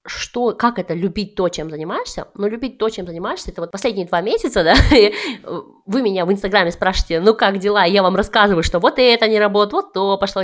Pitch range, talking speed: 180-230 Hz, 225 wpm